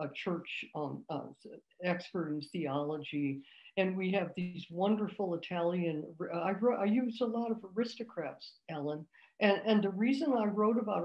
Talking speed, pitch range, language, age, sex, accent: 160 wpm, 165-205 Hz, English, 60-79, female, American